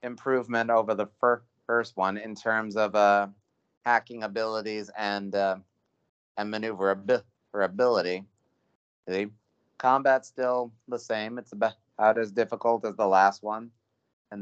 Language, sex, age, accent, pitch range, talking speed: English, male, 30-49, American, 105-125 Hz, 125 wpm